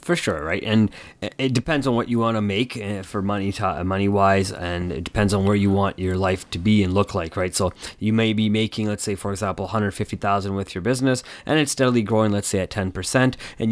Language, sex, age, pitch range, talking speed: English, male, 30-49, 95-115 Hz, 255 wpm